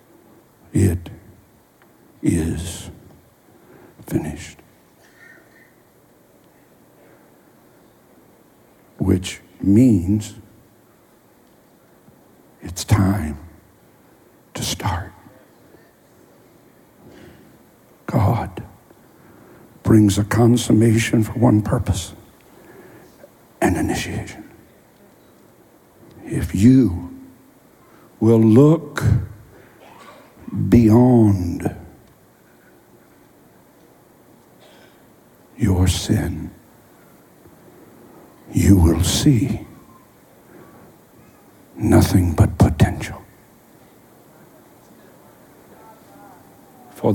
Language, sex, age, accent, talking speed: English, male, 60-79, American, 40 wpm